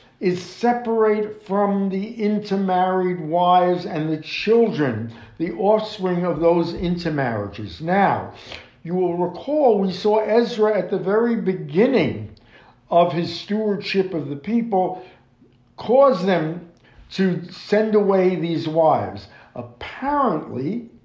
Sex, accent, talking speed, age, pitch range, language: male, American, 110 wpm, 60-79, 160-220 Hz, English